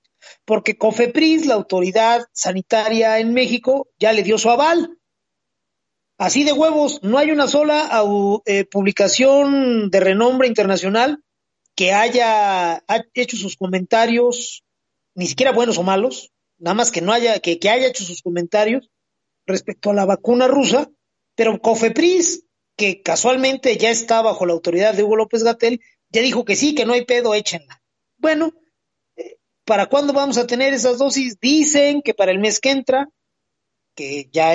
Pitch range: 200-265 Hz